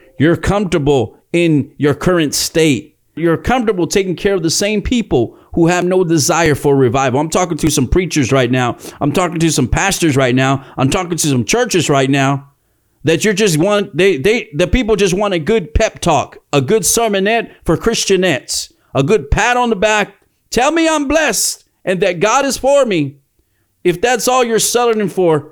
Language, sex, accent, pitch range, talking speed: English, male, American, 150-215 Hz, 195 wpm